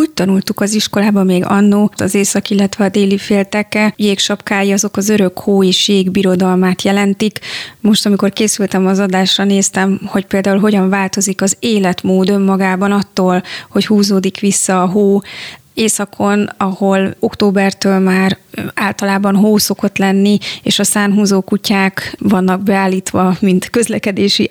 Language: Hungarian